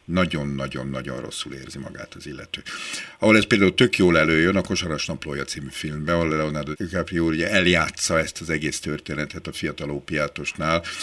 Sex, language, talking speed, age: male, Hungarian, 150 wpm, 50-69